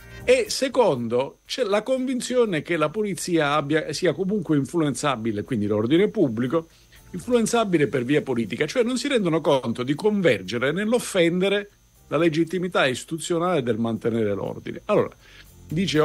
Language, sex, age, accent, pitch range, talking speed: Italian, male, 50-69, native, 110-165 Hz, 125 wpm